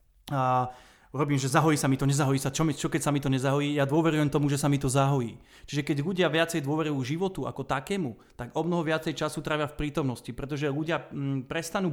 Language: Slovak